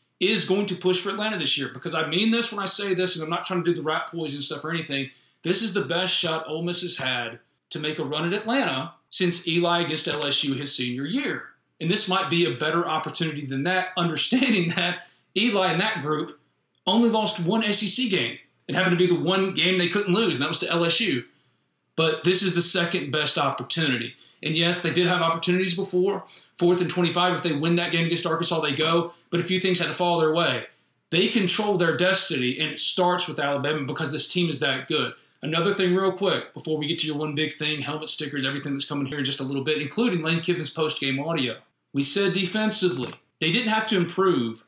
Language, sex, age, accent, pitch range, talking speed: English, male, 40-59, American, 155-185 Hz, 230 wpm